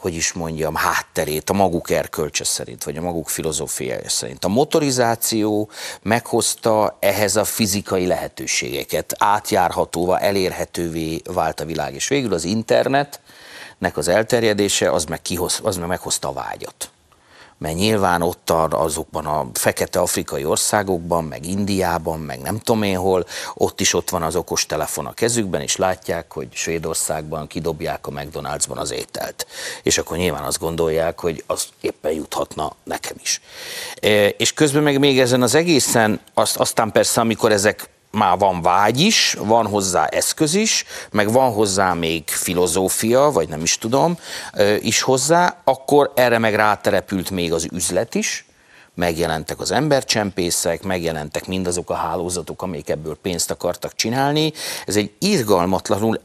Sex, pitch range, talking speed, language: male, 85-115 Hz, 145 wpm, Hungarian